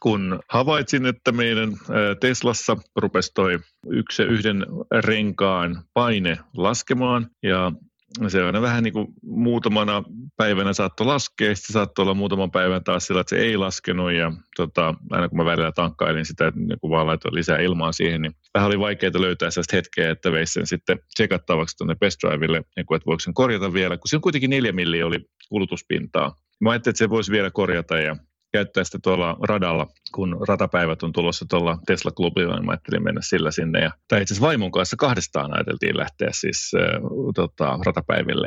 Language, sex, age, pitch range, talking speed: Finnish, male, 30-49, 85-115 Hz, 175 wpm